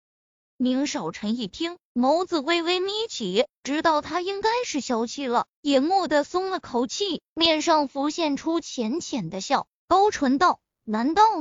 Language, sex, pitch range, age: Chinese, female, 245-345 Hz, 20-39